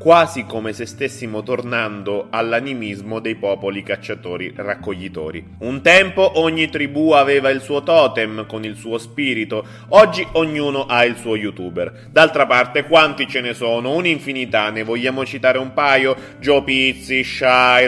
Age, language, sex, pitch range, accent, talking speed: 30-49, Italian, male, 110-140 Hz, native, 140 wpm